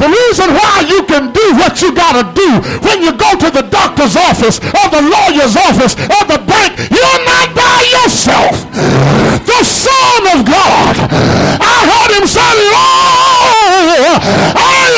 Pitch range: 240-385 Hz